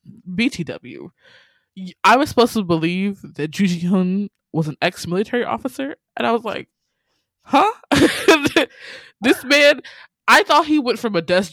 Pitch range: 170-250 Hz